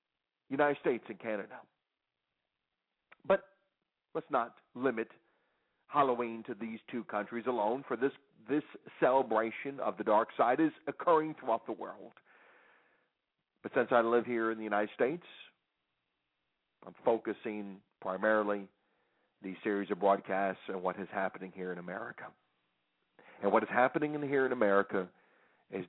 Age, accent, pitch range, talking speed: 50-69, American, 105-160 Hz, 135 wpm